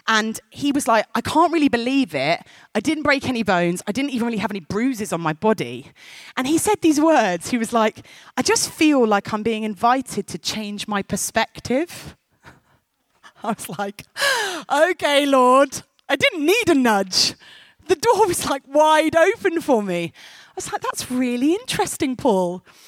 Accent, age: British, 30-49